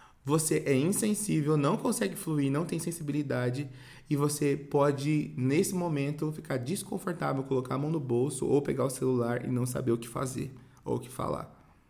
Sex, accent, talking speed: male, Brazilian, 175 wpm